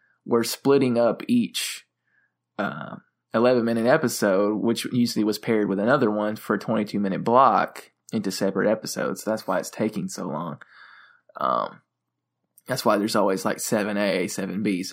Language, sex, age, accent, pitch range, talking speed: English, male, 20-39, American, 110-125 Hz, 140 wpm